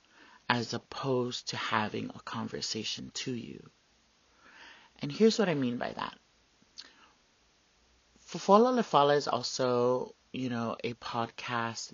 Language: English